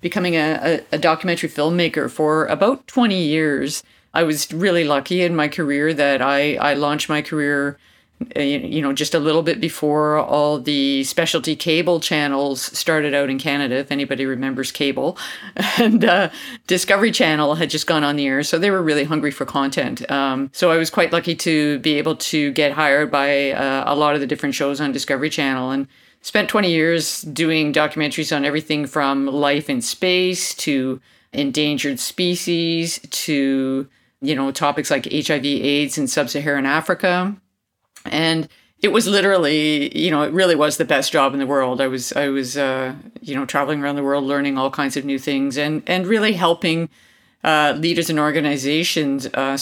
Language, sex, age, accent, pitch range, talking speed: English, female, 40-59, American, 140-165 Hz, 180 wpm